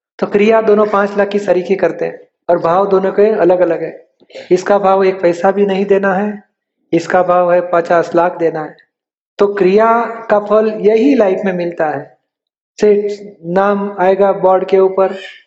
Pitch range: 180-200 Hz